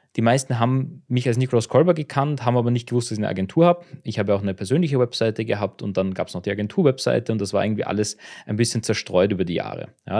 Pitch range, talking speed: 105-130 Hz, 255 wpm